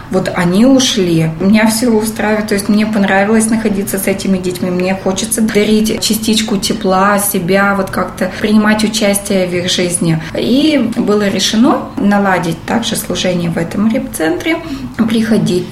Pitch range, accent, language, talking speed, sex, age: 190-225 Hz, native, Russian, 140 wpm, female, 20-39